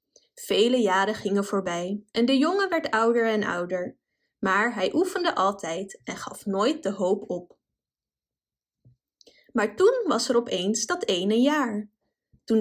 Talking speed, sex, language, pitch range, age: 145 wpm, female, Dutch, 205-290 Hz, 20-39